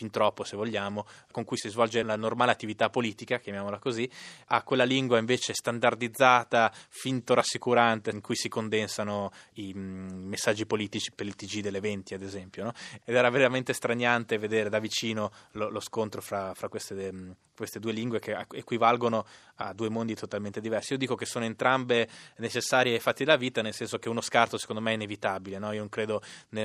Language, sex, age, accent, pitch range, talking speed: Italian, male, 20-39, native, 105-120 Hz, 185 wpm